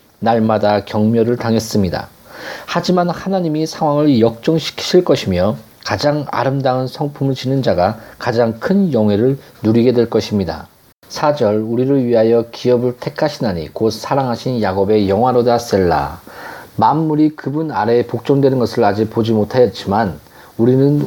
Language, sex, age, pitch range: Korean, male, 40-59, 110-145 Hz